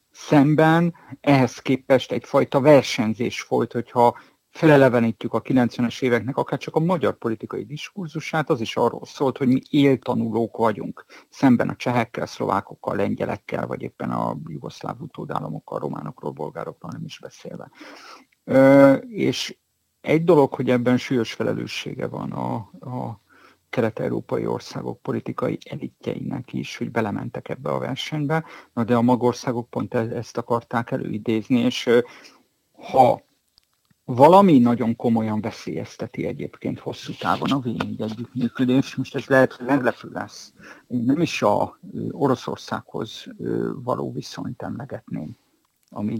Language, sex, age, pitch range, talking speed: Hungarian, male, 50-69, 115-135 Hz, 125 wpm